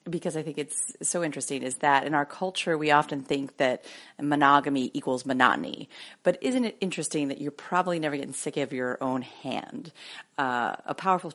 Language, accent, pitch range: English, American, 135-180 Hz